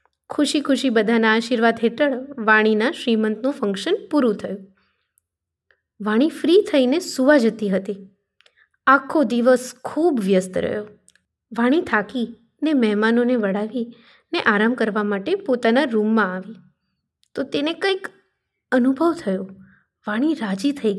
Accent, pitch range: native, 215-285 Hz